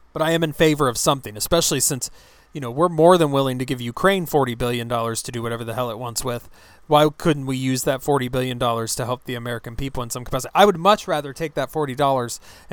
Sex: male